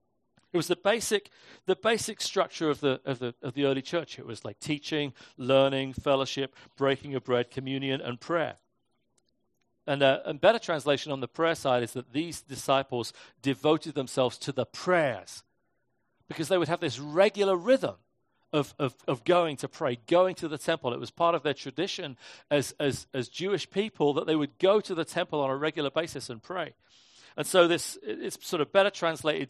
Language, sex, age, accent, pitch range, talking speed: English, male, 40-59, British, 135-175 Hz, 190 wpm